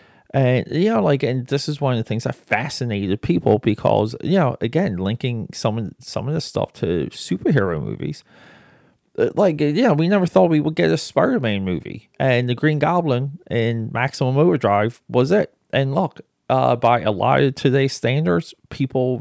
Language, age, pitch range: English, 30-49, 100-135 Hz